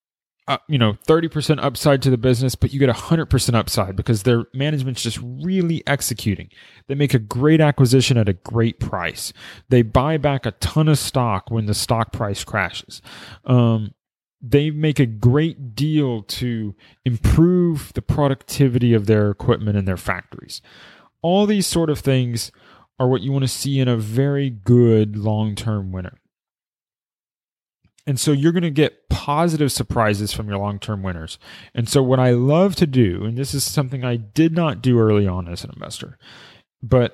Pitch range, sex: 110-140 Hz, male